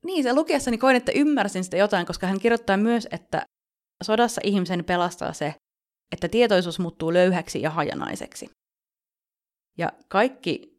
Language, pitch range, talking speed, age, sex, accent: Finnish, 165-200 Hz, 135 wpm, 30-49, female, native